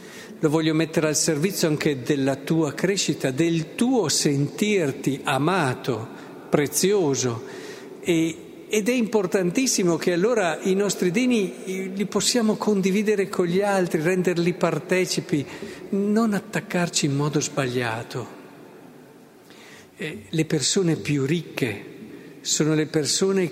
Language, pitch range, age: Italian, 130-180 Hz, 50-69